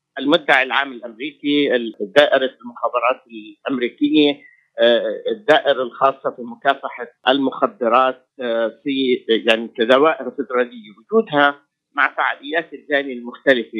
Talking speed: 85 wpm